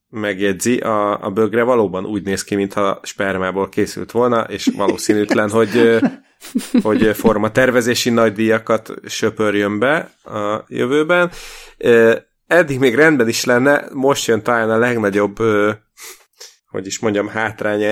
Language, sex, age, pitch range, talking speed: Hungarian, male, 30-49, 95-115 Hz, 125 wpm